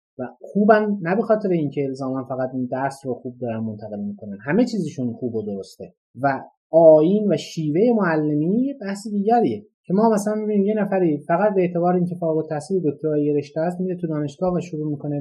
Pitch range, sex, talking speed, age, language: 135-185 Hz, male, 190 wpm, 30-49, Persian